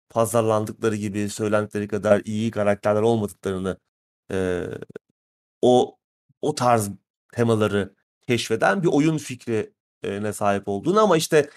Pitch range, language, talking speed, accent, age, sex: 110-150 Hz, Turkish, 105 wpm, native, 30-49, male